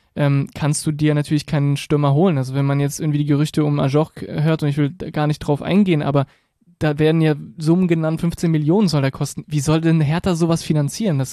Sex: male